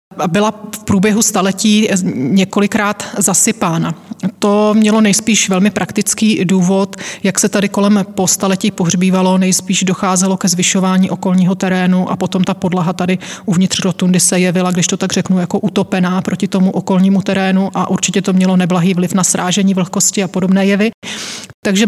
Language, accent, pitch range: Czech, native, 185-210 Hz